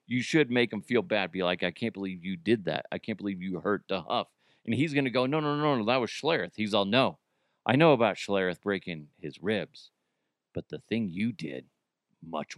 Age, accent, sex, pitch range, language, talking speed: 40-59, American, male, 115-150 Hz, English, 235 wpm